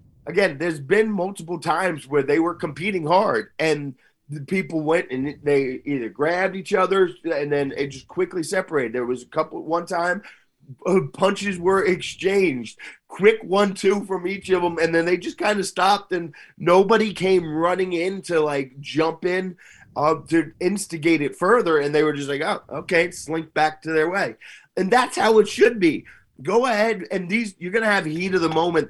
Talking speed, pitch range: 190 wpm, 145-190 Hz